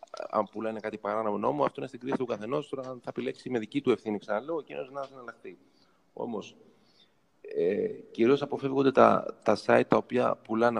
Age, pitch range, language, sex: 30-49, 110-145 Hz, Greek, male